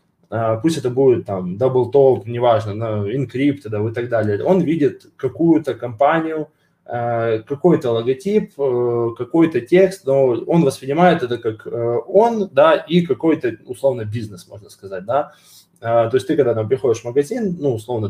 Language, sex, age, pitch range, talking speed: Russian, male, 20-39, 115-170 Hz, 150 wpm